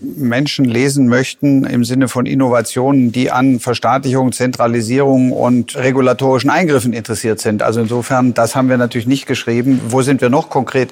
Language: German